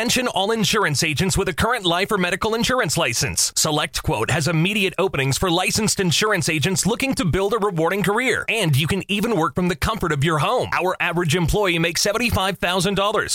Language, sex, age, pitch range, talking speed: Italian, male, 30-49, 165-215 Hz, 190 wpm